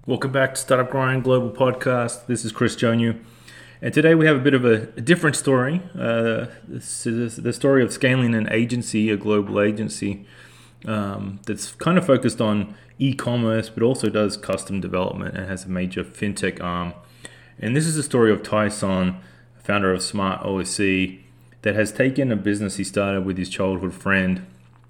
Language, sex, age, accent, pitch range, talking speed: English, male, 20-39, Australian, 95-120 Hz, 180 wpm